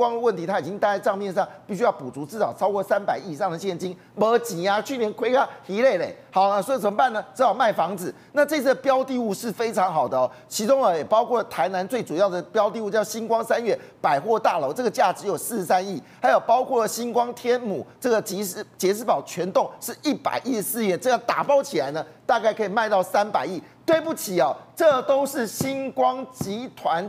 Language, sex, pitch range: Chinese, male, 195-265 Hz